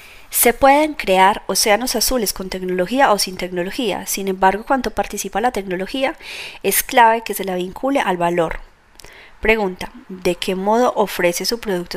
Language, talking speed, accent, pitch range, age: Spanish, 155 wpm, Colombian, 185-240 Hz, 30-49